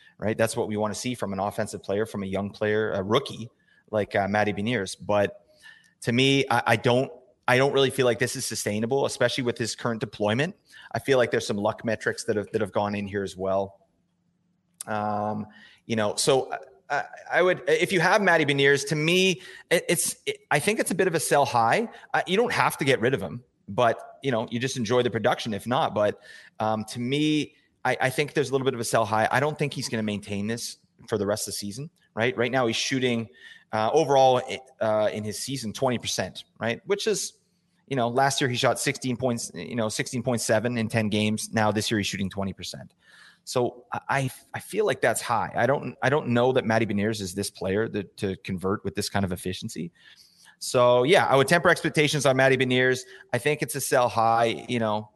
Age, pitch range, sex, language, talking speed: 30-49, 105-140 Hz, male, English, 225 wpm